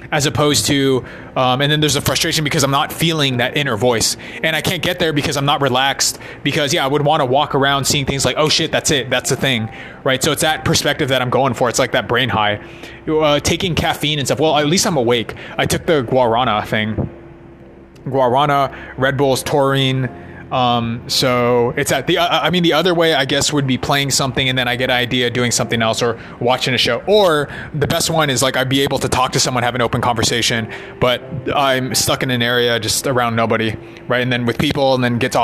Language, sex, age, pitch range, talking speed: English, male, 20-39, 120-145 Hz, 235 wpm